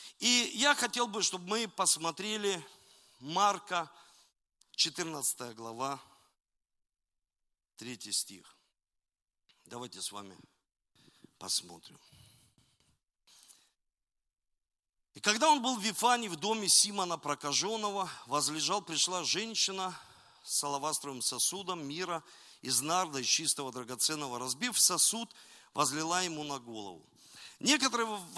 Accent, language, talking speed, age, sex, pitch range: native, Russian, 95 wpm, 50-69, male, 155-235 Hz